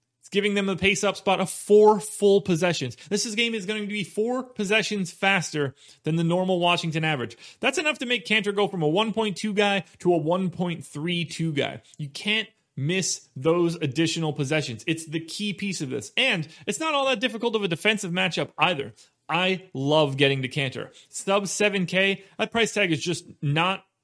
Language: English